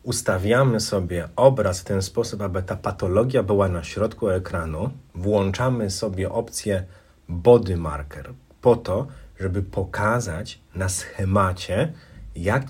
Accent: native